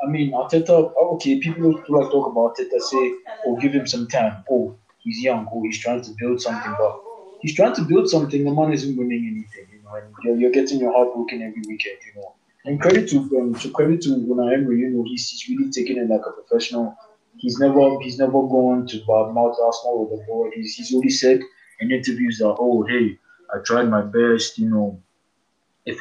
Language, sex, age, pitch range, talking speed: English, male, 20-39, 110-140 Hz, 220 wpm